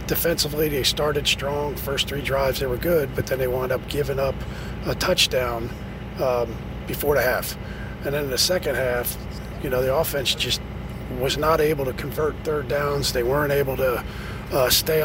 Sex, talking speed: male, 185 wpm